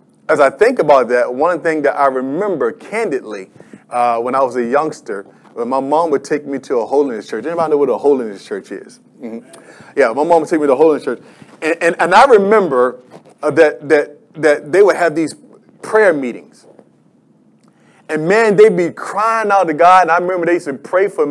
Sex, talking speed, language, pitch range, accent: male, 210 wpm, English, 150-220 Hz, American